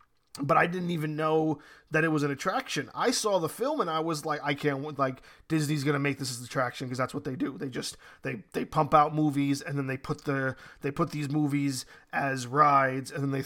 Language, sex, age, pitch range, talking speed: English, male, 20-39, 145-195 Hz, 240 wpm